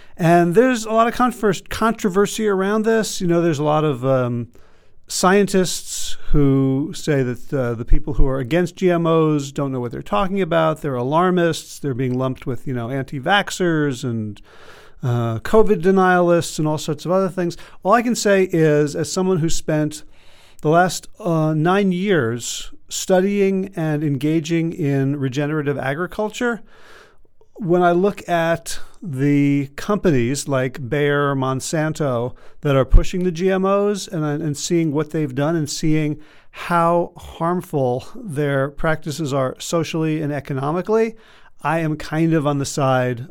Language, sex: English, male